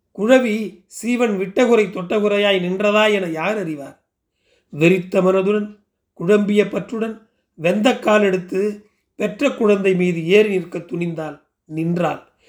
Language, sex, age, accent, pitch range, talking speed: Tamil, male, 40-59, native, 170-210 Hz, 100 wpm